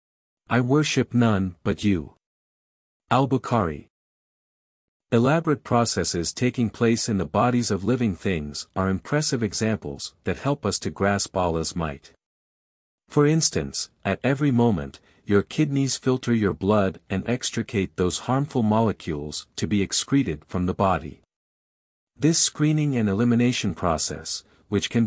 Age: 50-69